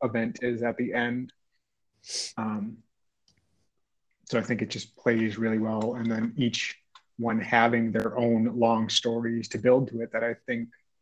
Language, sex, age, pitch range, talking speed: English, male, 30-49, 115-125 Hz, 165 wpm